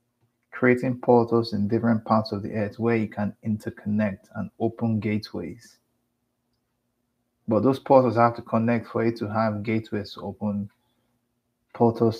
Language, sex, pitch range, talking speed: English, male, 105-120 Hz, 145 wpm